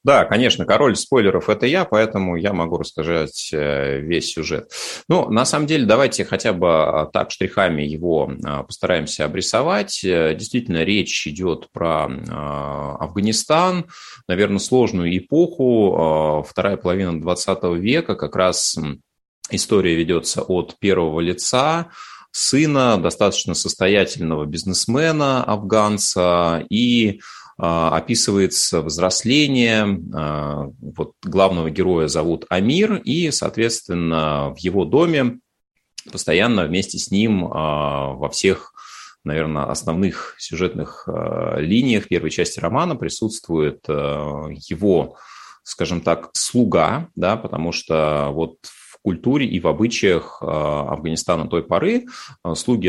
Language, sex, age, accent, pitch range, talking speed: Russian, male, 20-39, native, 80-110 Hz, 105 wpm